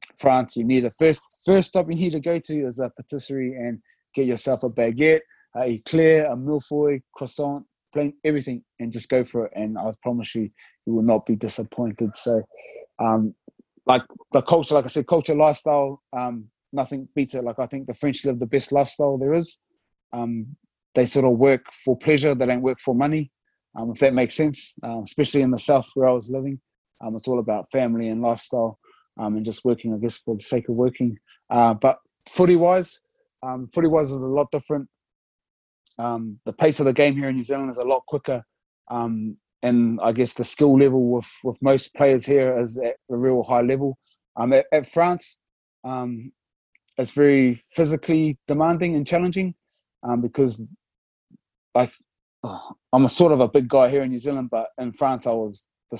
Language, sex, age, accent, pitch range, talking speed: English, male, 20-39, British, 120-145 Hz, 195 wpm